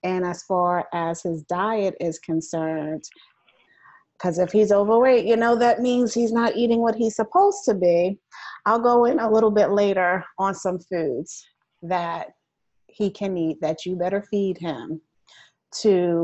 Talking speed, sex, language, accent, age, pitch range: 165 wpm, female, English, American, 30-49, 170-215 Hz